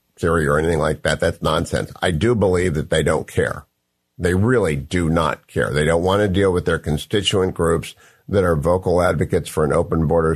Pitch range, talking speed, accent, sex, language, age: 80-105 Hz, 210 wpm, American, male, English, 50-69